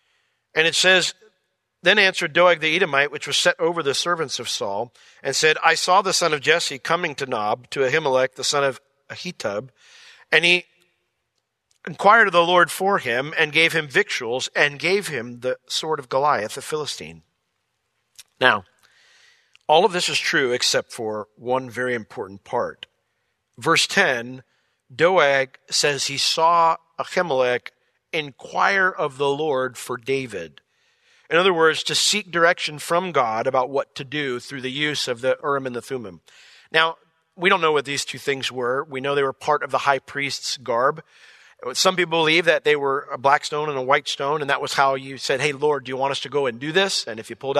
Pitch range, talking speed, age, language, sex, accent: 130-175 Hz, 195 wpm, 50-69, English, male, American